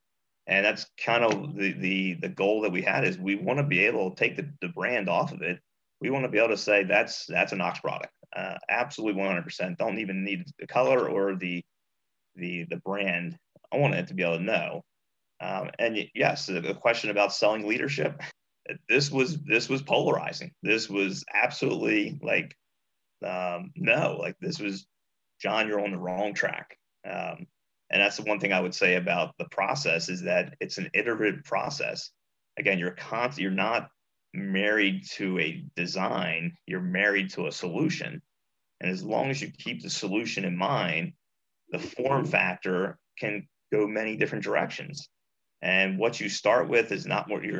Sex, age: male, 30-49